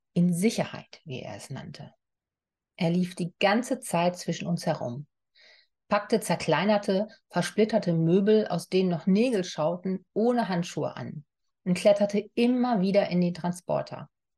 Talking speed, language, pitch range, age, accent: 140 wpm, German, 170-205 Hz, 40-59, German